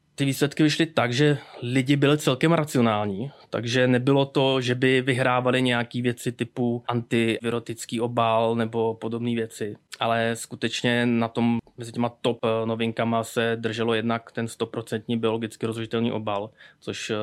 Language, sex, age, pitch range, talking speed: Czech, male, 20-39, 110-125 Hz, 140 wpm